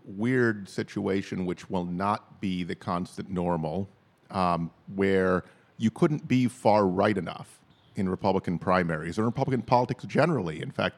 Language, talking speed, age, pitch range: English, 140 wpm, 50-69, 95-110 Hz